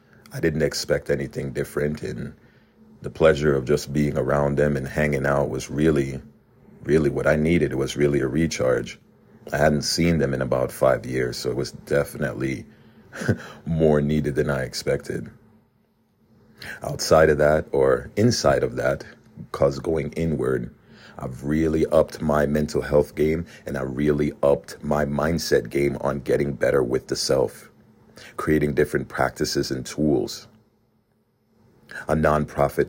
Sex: male